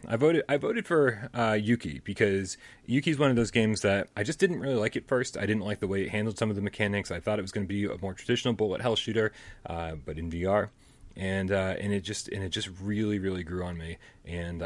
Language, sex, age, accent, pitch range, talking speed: English, male, 30-49, American, 90-125 Hz, 260 wpm